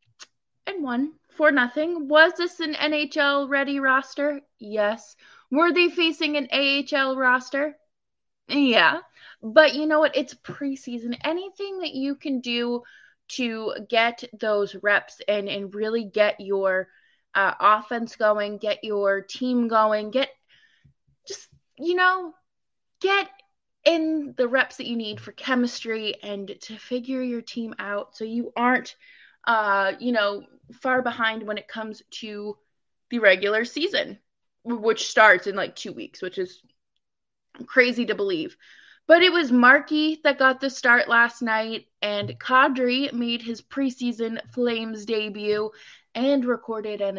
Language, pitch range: English, 215-290 Hz